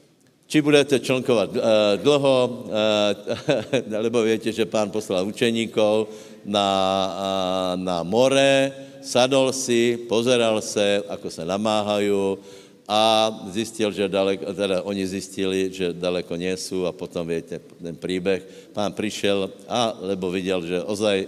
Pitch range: 95-120 Hz